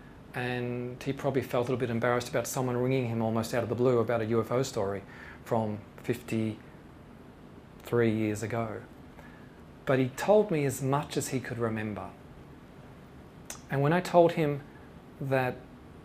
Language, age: English, 40-59